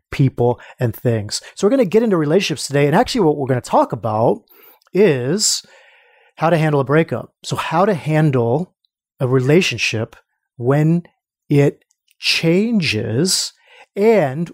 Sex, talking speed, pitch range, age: male, 145 wpm, 125-165 Hz, 30-49